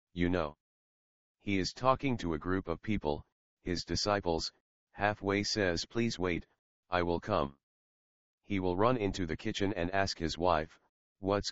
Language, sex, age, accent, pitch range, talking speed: English, male, 40-59, American, 80-100 Hz, 155 wpm